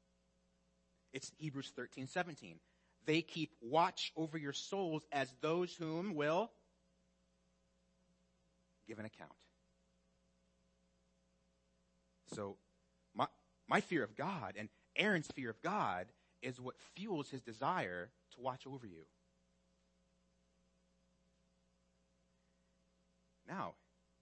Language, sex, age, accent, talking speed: English, male, 30-49, American, 95 wpm